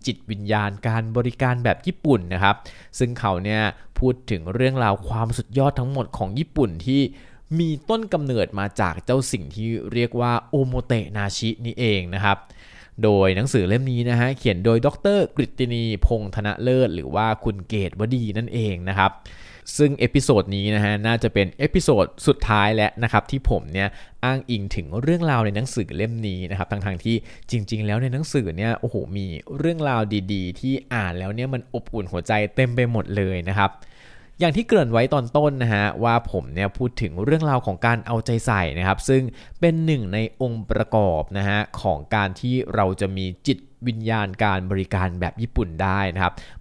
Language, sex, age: Thai, male, 20-39